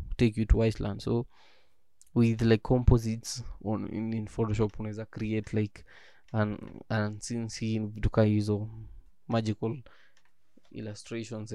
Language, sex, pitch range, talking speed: English, male, 110-120 Hz, 130 wpm